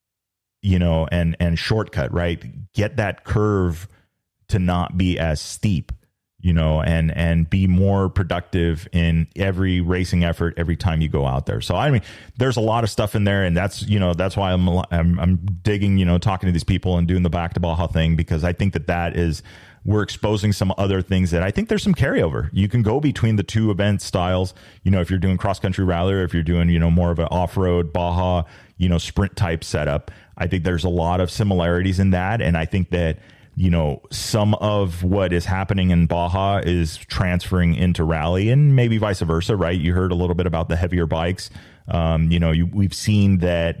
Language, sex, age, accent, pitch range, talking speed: English, male, 30-49, American, 85-100 Hz, 220 wpm